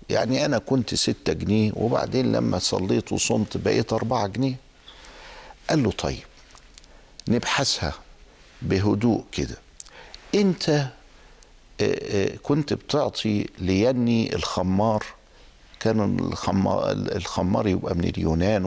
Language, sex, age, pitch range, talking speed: Arabic, male, 60-79, 95-130 Hz, 100 wpm